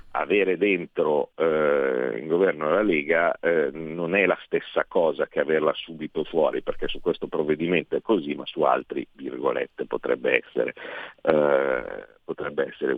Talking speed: 150 wpm